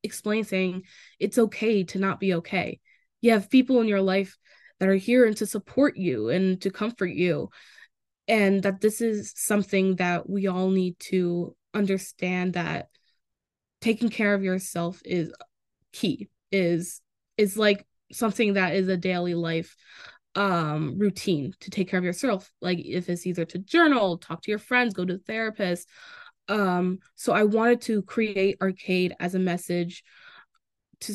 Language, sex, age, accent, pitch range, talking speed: English, female, 10-29, American, 180-215 Hz, 160 wpm